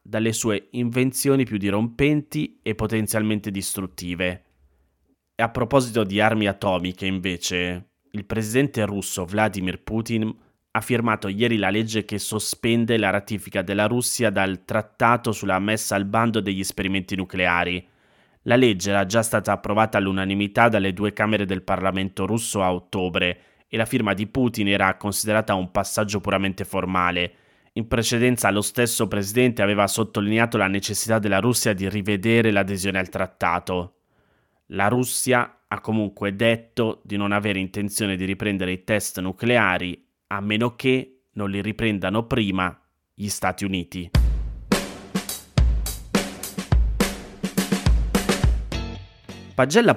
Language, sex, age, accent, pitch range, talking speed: Italian, male, 20-39, native, 95-115 Hz, 130 wpm